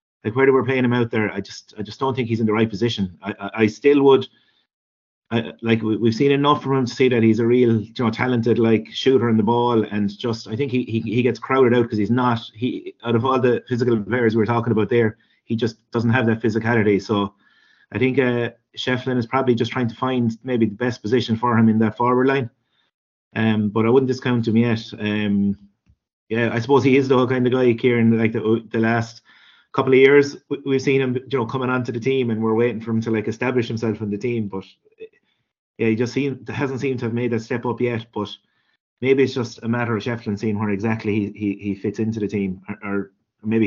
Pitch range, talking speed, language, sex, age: 110-125 Hz, 245 wpm, English, male, 30-49